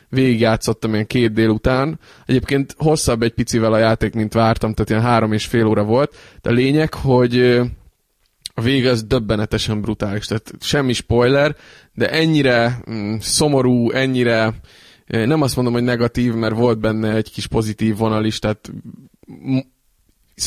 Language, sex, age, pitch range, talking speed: Hungarian, male, 20-39, 110-125 Hz, 150 wpm